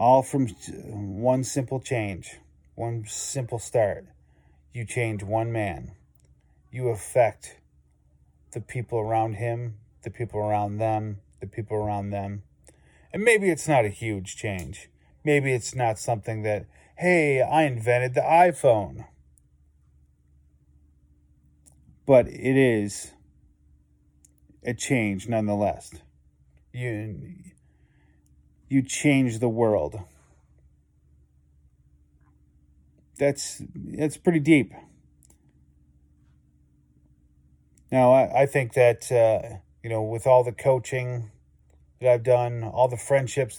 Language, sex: English, male